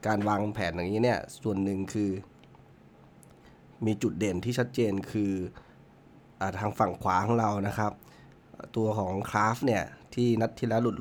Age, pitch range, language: 20-39, 105-125 Hz, Thai